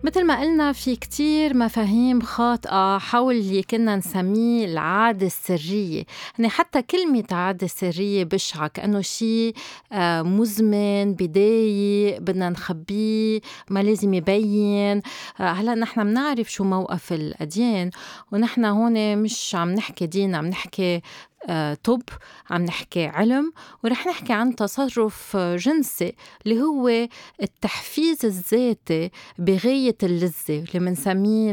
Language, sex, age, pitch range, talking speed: Arabic, female, 30-49, 175-230 Hz, 115 wpm